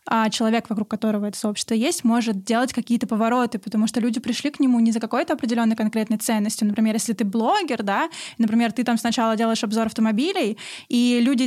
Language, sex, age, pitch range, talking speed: Russian, female, 20-39, 225-255 Hz, 195 wpm